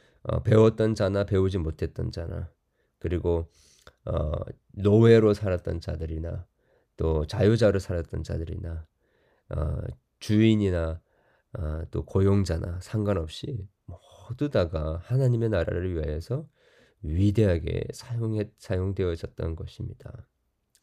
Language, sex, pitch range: Korean, male, 80-110 Hz